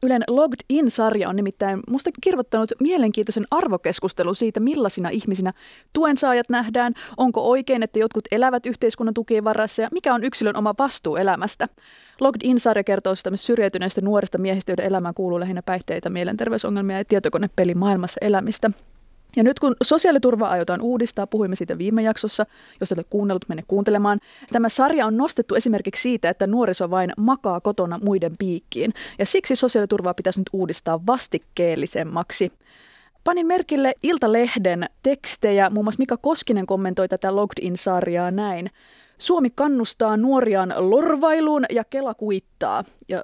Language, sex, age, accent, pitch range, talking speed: Finnish, female, 30-49, native, 190-245 Hz, 140 wpm